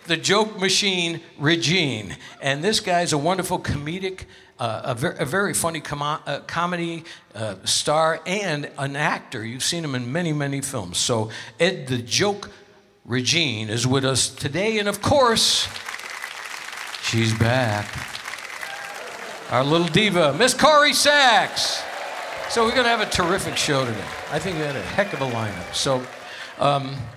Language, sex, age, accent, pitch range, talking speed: English, male, 60-79, American, 115-165 Hz, 150 wpm